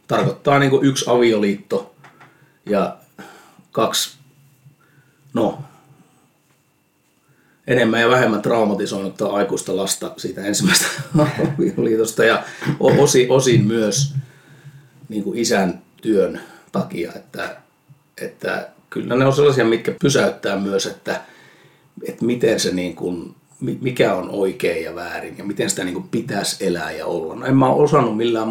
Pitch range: 115-150 Hz